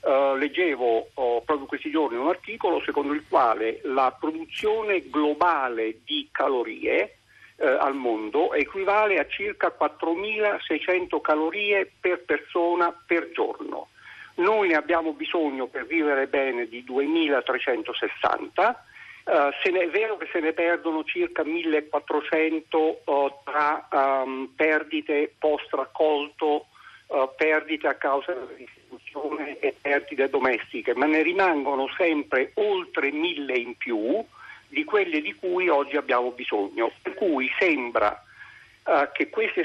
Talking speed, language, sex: 110 wpm, Italian, male